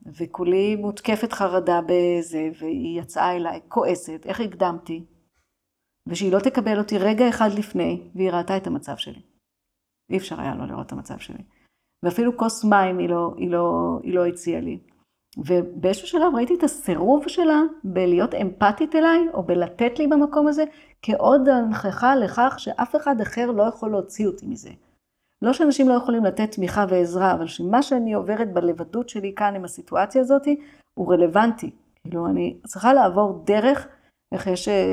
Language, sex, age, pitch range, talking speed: Hebrew, female, 50-69, 175-240 Hz, 160 wpm